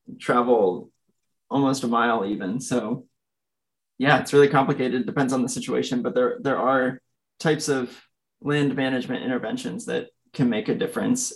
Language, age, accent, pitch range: English, 20-39, American, 125-145 Hz